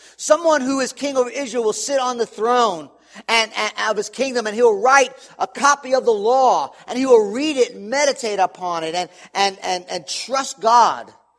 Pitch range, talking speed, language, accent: 160-260 Hz, 205 wpm, English, American